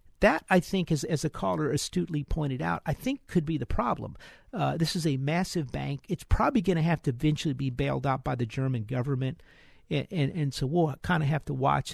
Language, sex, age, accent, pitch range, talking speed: English, male, 50-69, American, 135-170 Hz, 235 wpm